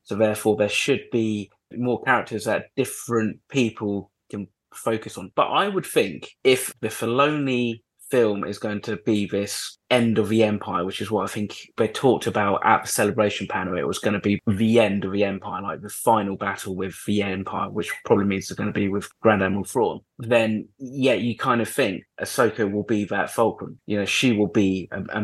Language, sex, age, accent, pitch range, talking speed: English, male, 20-39, British, 100-120 Hz, 210 wpm